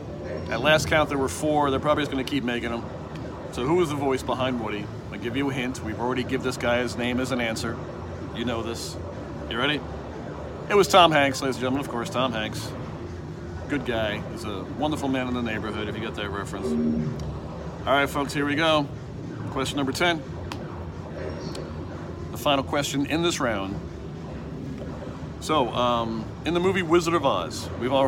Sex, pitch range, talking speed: male, 110-150 Hz, 190 wpm